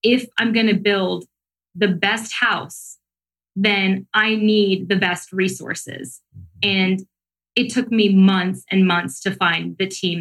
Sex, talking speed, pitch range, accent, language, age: female, 145 wpm, 185-210 Hz, American, English, 20-39